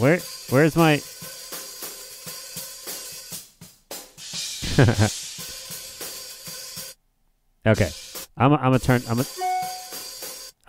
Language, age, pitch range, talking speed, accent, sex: English, 30-49, 105-140 Hz, 60 wpm, American, male